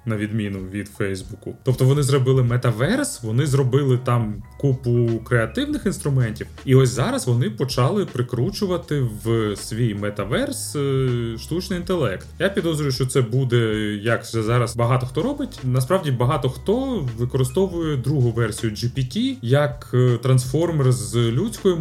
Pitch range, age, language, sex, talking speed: 115-140 Hz, 30-49, Ukrainian, male, 130 wpm